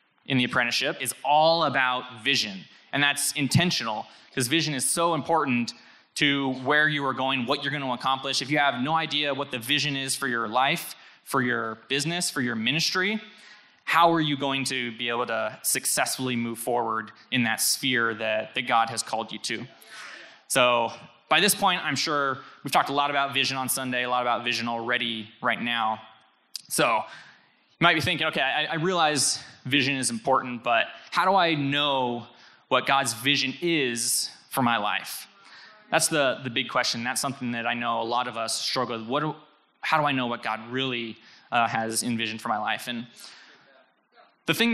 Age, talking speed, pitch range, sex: 20-39, 190 wpm, 120-145 Hz, male